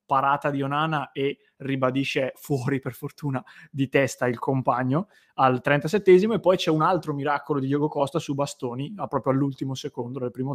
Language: Italian